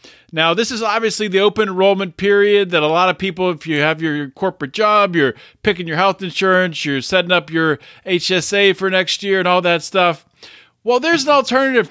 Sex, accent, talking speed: male, American, 205 wpm